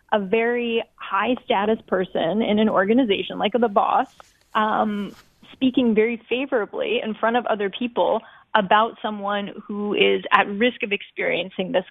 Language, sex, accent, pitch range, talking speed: English, female, American, 200-235 Hz, 145 wpm